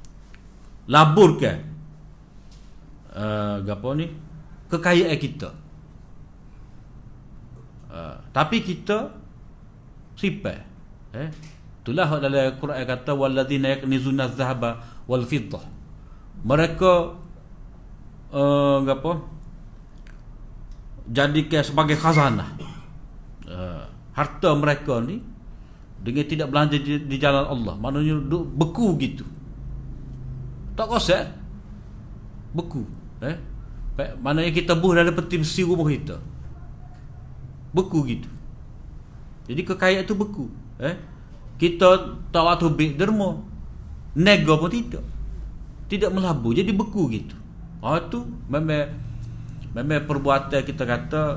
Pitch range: 130-165 Hz